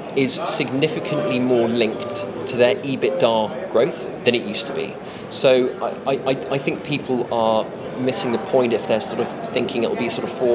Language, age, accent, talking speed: English, 20-39, British, 190 wpm